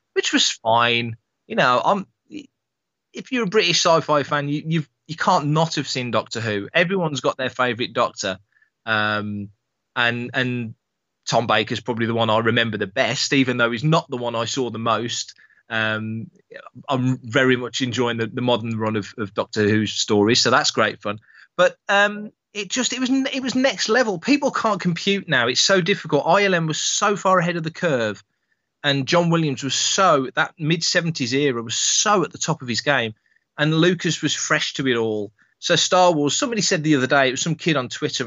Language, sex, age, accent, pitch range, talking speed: English, male, 20-39, British, 120-175 Hz, 200 wpm